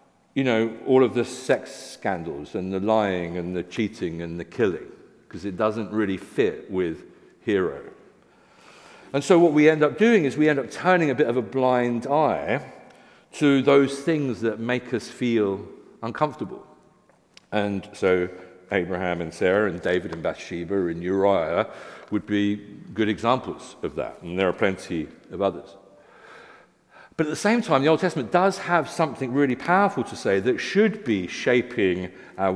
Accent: British